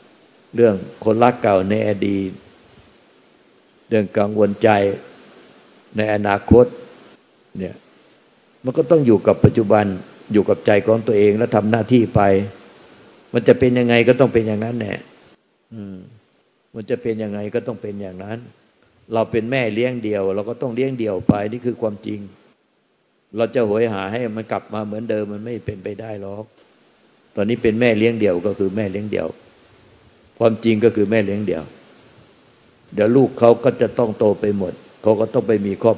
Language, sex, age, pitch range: Thai, male, 60-79, 105-120 Hz